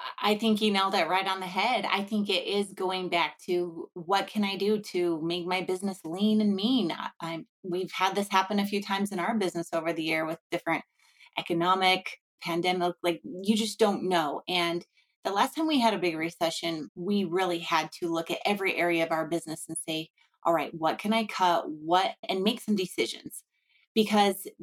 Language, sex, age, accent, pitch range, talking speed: English, female, 30-49, American, 175-210 Hz, 200 wpm